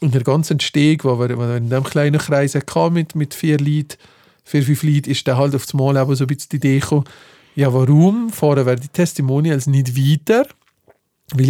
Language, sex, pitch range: German, male, 135-160 Hz